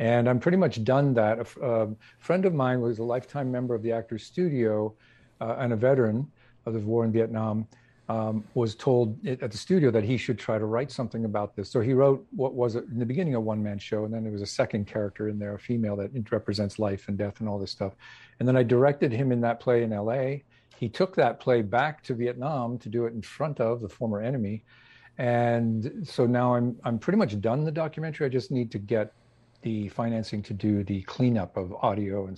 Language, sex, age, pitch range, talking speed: English, male, 50-69, 110-125 Hz, 235 wpm